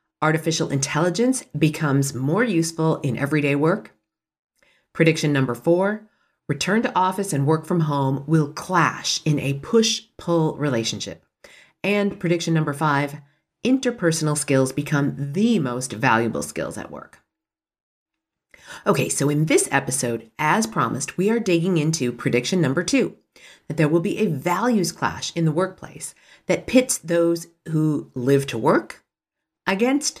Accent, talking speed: American, 135 wpm